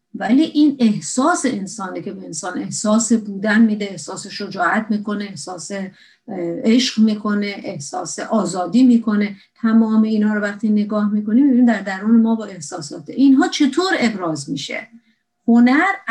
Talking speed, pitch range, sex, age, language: 135 wpm, 210-265 Hz, female, 50-69, Persian